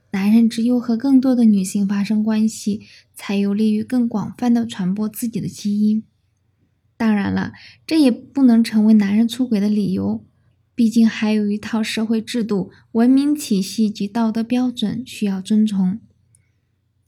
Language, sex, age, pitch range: Chinese, female, 10-29, 190-230 Hz